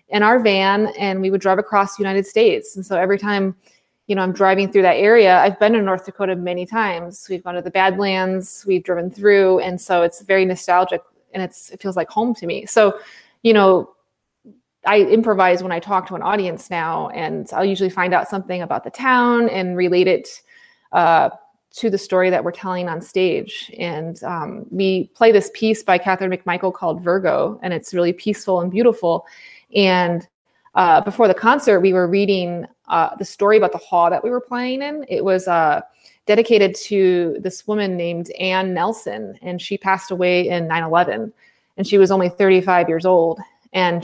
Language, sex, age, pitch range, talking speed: English, female, 20-39, 180-210 Hz, 195 wpm